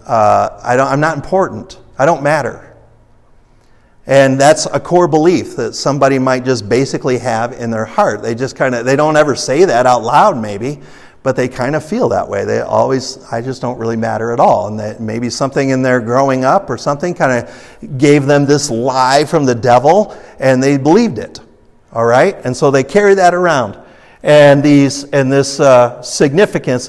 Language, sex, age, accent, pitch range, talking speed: English, male, 50-69, American, 120-150 Hz, 190 wpm